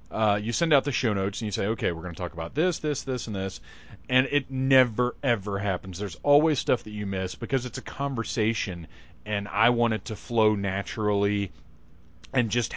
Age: 30-49